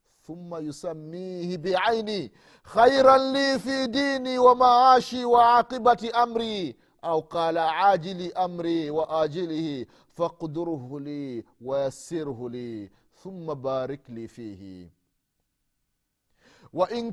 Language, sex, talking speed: Swahili, male, 85 wpm